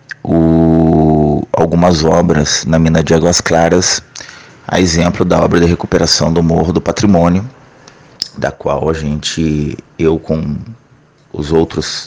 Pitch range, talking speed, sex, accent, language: 80-90 Hz, 125 wpm, male, Brazilian, Portuguese